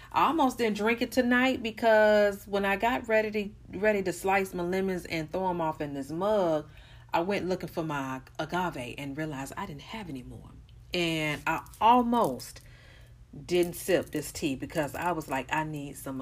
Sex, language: female, English